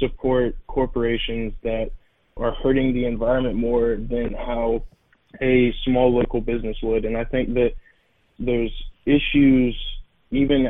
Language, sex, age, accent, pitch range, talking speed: English, male, 20-39, American, 115-130 Hz, 125 wpm